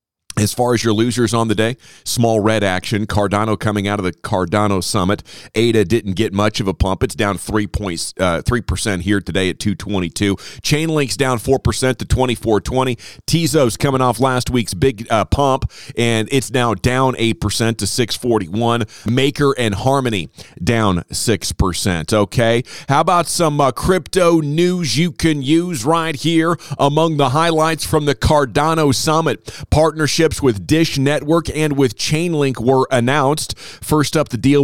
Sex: male